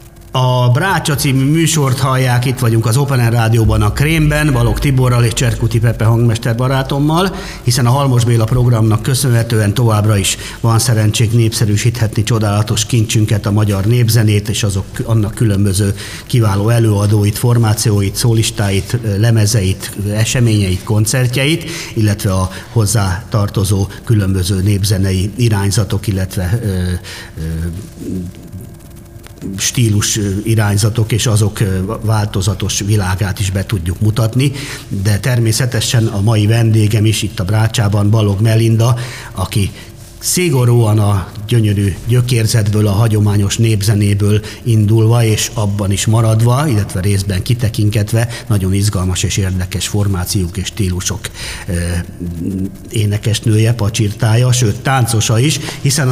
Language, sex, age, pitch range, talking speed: Hungarian, male, 50-69, 105-120 Hz, 110 wpm